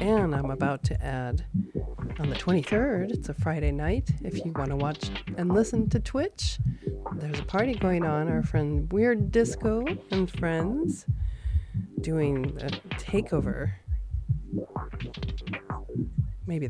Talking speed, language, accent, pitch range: 130 wpm, English, American, 130-190 Hz